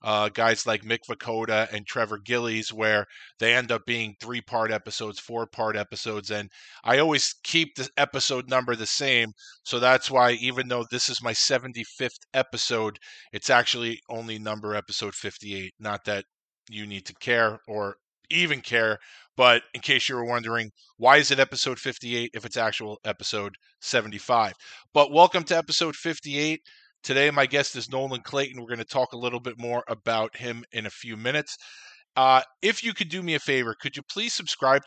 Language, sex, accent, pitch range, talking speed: English, male, American, 115-135 Hz, 180 wpm